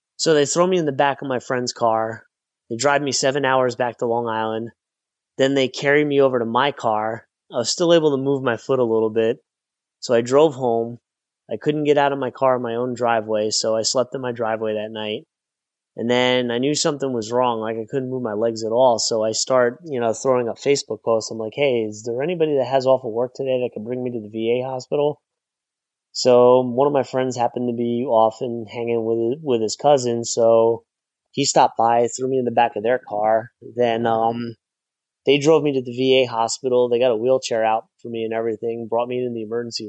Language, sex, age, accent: English, male, 20-39, American